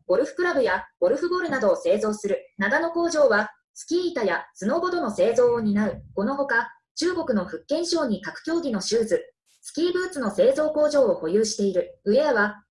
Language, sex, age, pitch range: Japanese, female, 20-39, 230-345 Hz